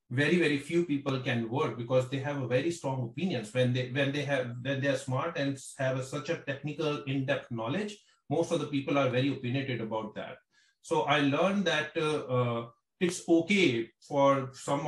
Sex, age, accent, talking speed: male, 30-49, Indian, 195 wpm